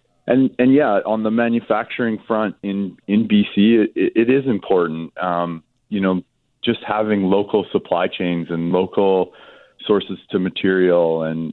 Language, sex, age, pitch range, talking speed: English, male, 20-39, 85-100 Hz, 145 wpm